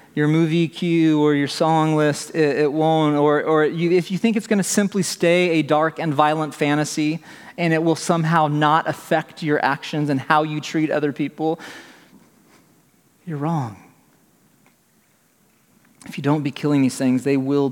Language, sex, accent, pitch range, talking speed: English, male, American, 135-160 Hz, 175 wpm